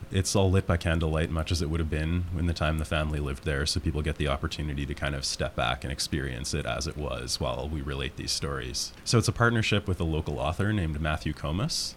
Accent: American